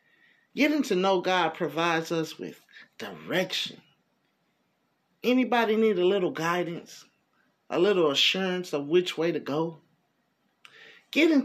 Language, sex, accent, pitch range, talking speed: English, male, American, 160-245 Hz, 115 wpm